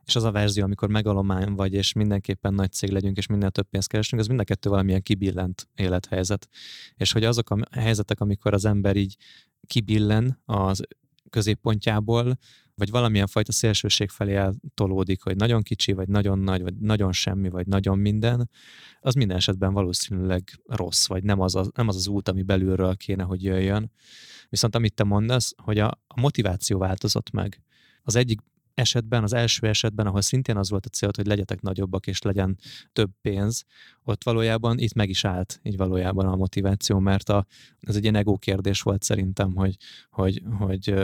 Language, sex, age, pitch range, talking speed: Hungarian, male, 20-39, 95-115 Hz, 175 wpm